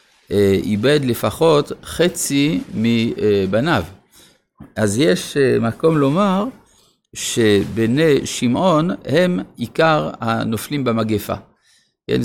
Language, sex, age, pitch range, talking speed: Hebrew, male, 50-69, 110-145 Hz, 75 wpm